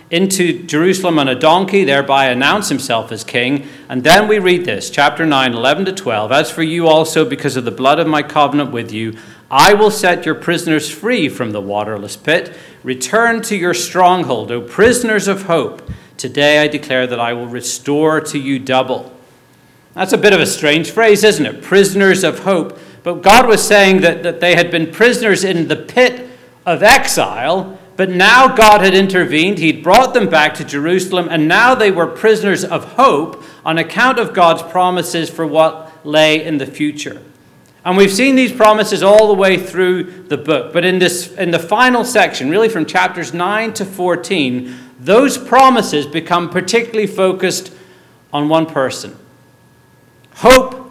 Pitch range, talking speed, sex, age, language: 150-195 Hz, 175 wpm, male, 40-59, English